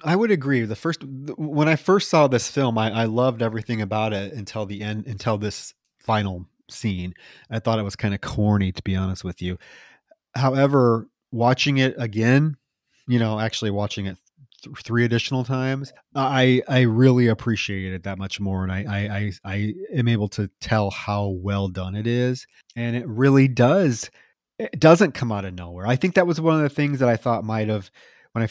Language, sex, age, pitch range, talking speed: English, male, 30-49, 100-130 Hz, 200 wpm